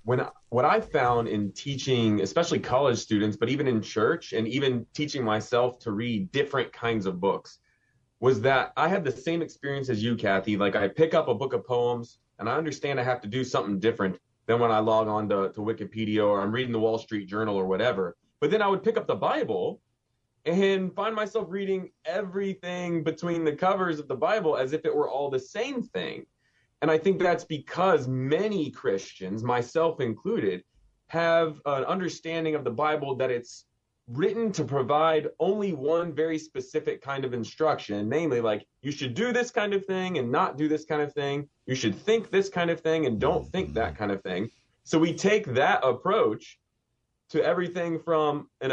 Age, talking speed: 30-49, 195 wpm